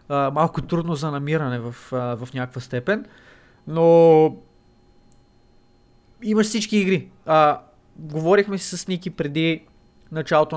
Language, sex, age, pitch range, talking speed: Bulgarian, male, 20-39, 140-180 Hz, 115 wpm